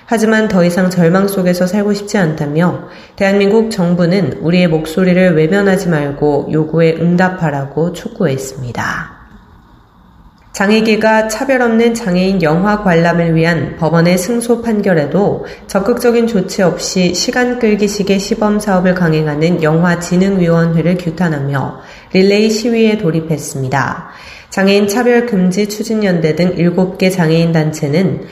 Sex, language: female, Korean